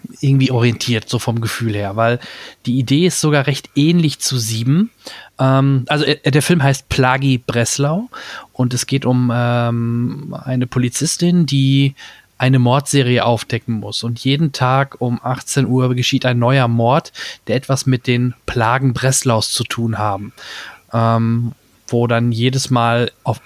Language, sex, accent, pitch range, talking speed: German, male, German, 115-135 Hz, 150 wpm